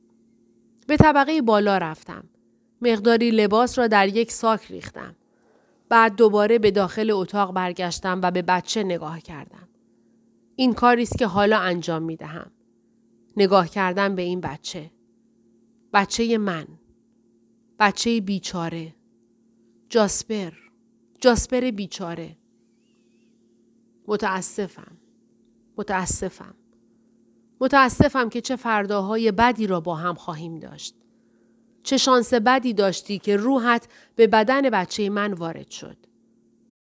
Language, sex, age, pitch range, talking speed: Persian, female, 30-49, 155-225 Hz, 105 wpm